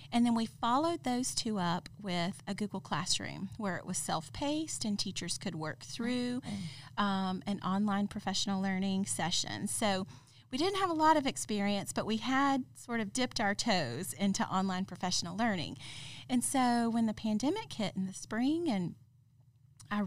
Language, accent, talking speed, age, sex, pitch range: English, American, 170 wpm, 30-49, female, 185-225 Hz